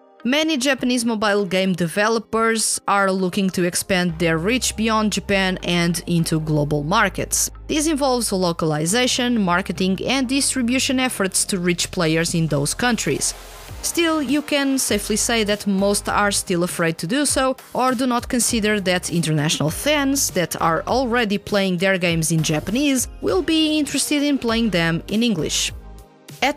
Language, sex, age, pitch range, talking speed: English, female, 20-39, 180-260 Hz, 150 wpm